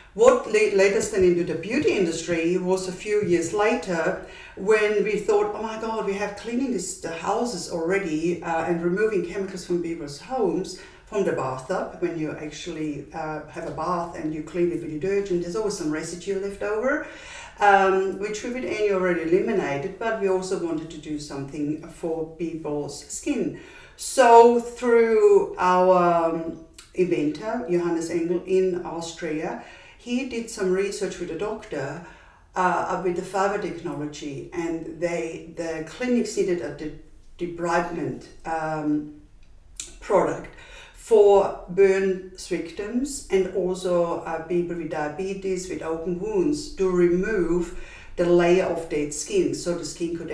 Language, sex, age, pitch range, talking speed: English, female, 50-69, 165-205 Hz, 145 wpm